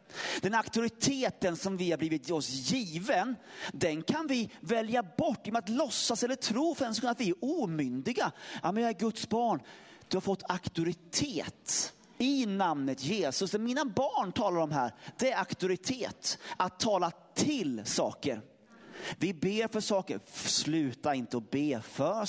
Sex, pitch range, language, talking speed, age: male, 160-240 Hz, Swedish, 155 wpm, 30-49